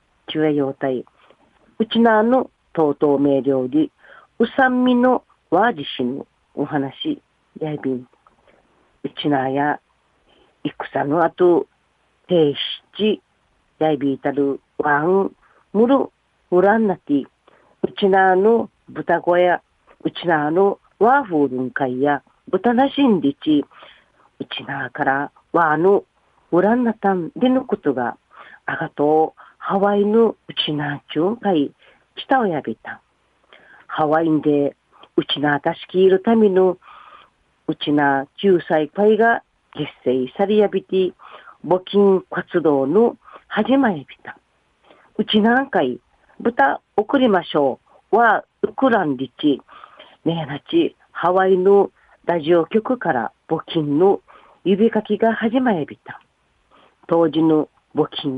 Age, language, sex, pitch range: 40-59, Japanese, female, 150-230 Hz